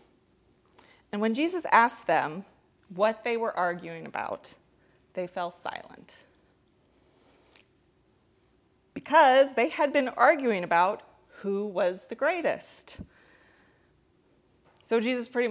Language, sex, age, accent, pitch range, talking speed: English, female, 30-49, American, 175-230 Hz, 100 wpm